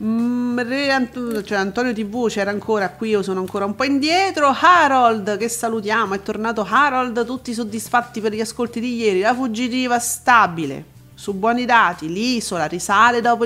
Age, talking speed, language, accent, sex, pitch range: 40-59, 155 wpm, Italian, native, female, 205-260 Hz